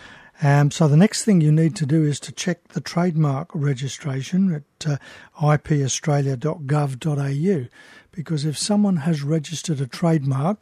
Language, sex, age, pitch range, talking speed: English, male, 60-79, 145-165 Hz, 140 wpm